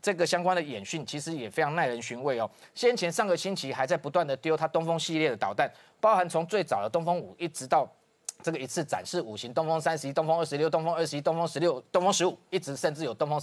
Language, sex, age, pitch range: Chinese, male, 20-39, 140-180 Hz